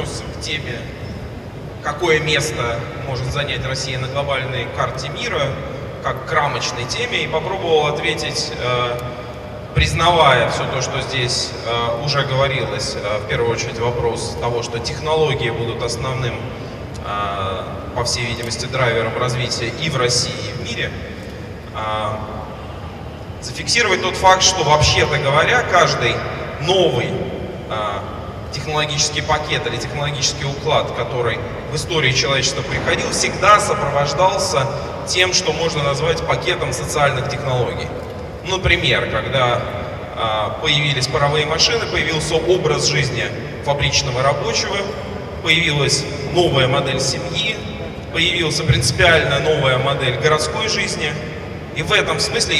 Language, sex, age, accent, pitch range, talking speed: Russian, male, 20-39, native, 120-150 Hz, 110 wpm